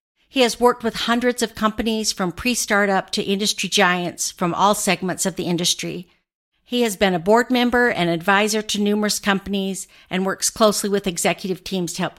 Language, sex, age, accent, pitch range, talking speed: English, female, 50-69, American, 180-215 Hz, 180 wpm